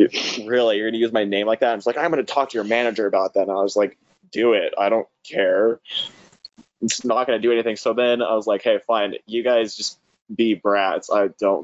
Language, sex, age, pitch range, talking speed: English, male, 20-39, 105-125 Hz, 240 wpm